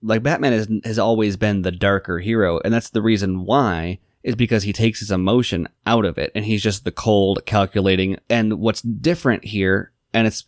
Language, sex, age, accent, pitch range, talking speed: English, male, 20-39, American, 95-115 Hz, 200 wpm